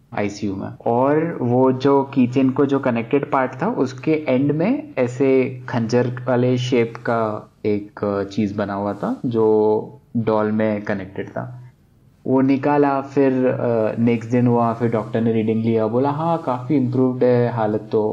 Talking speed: 155 wpm